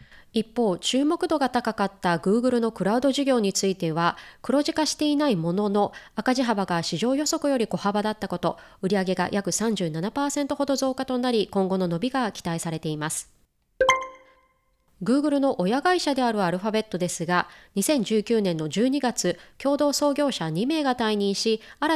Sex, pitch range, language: female, 185-270 Hz, Japanese